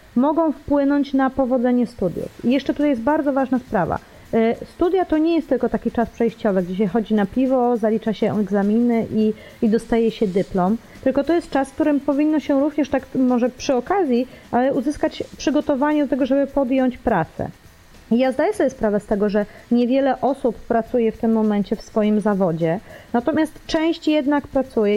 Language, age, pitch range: Polish, 30-49, 220-275 Hz